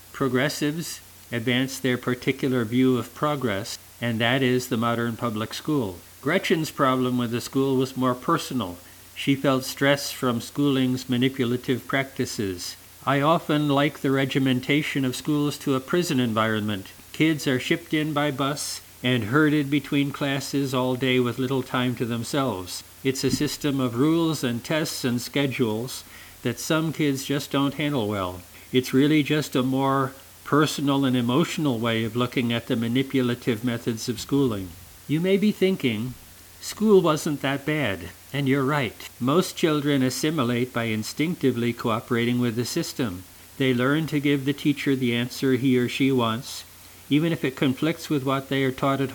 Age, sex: 50-69, male